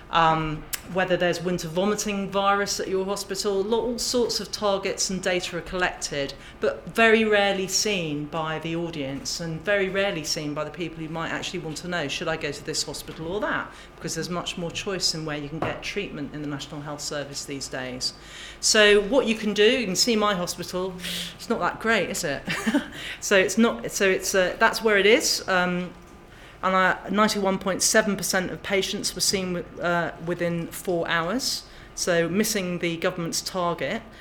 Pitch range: 165-200 Hz